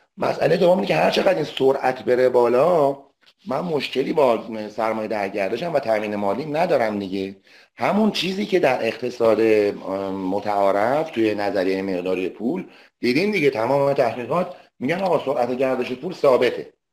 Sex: male